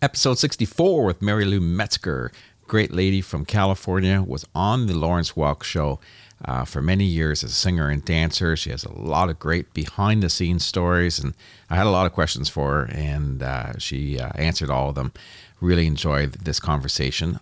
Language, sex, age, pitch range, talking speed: English, male, 50-69, 75-100 Hz, 185 wpm